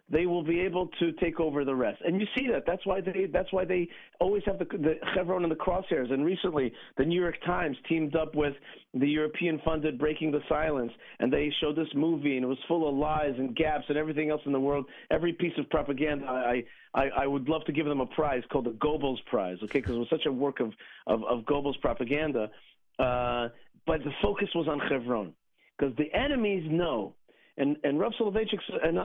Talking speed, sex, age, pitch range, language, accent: 215 wpm, male, 50-69, 140-185 Hz, English, American